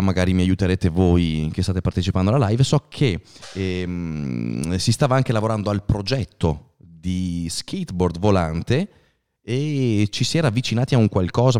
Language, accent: Italian, native